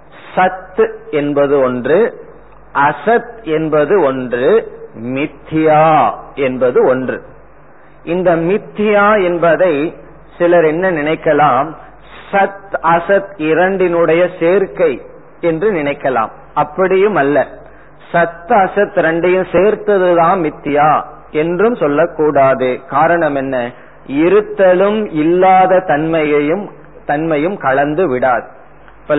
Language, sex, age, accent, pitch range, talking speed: Tamil, male, 40-59, native, 145-195 Hz, 60 wpm